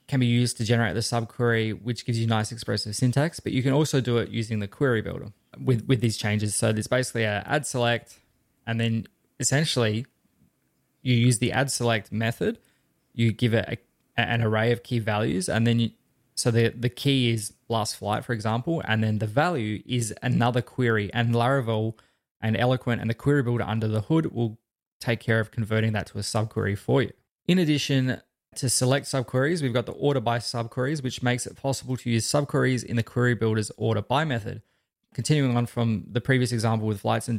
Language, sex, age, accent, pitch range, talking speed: English, male, 20-39, Australian, 110-125 Hz, 200 wpm